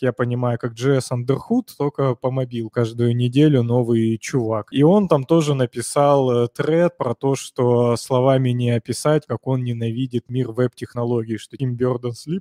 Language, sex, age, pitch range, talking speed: Russian, male, 20-39, 120-140 Hz, 150 wpm